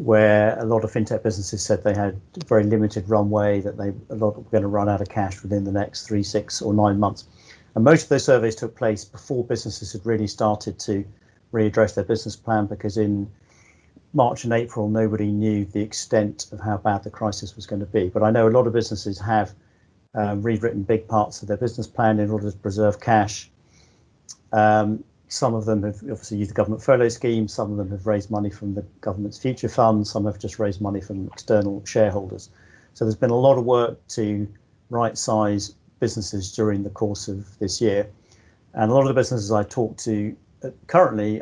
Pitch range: 105-110 Hz